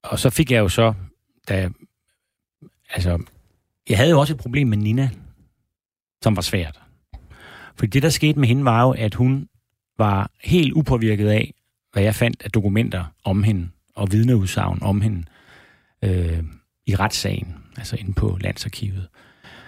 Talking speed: 160 wpm